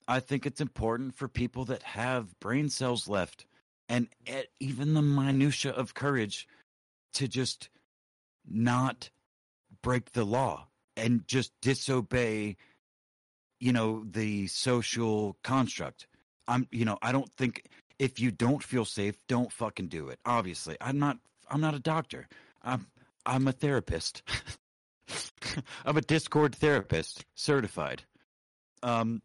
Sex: male